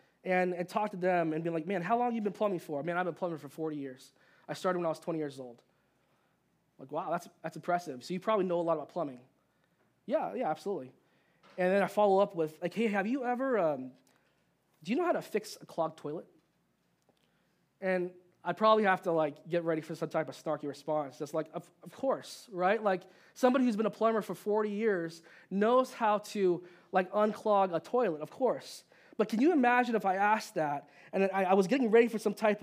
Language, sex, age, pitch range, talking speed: English, male, 20-39, 170-215 Hz, 225 wpm